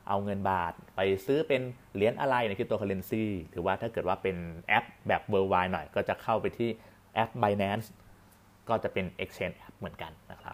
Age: 30-49